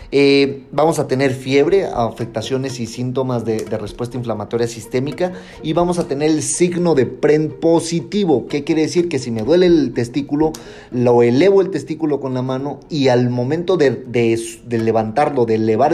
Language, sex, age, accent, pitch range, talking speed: Spanish, male, 30-49, Mexican, 115-145 Hz, 175 wpm